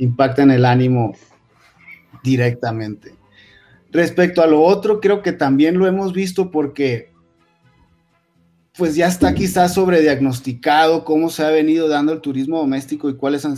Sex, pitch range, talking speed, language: male, 130-155 Hz, 140 wpm, Spanish